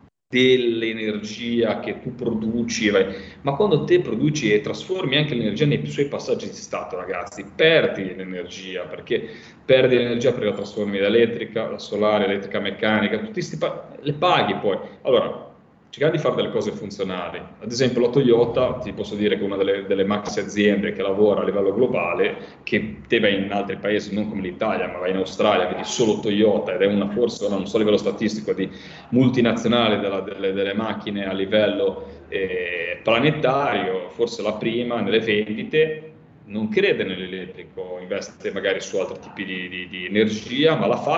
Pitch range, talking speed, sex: 100-130 Hz, 170 wpm, male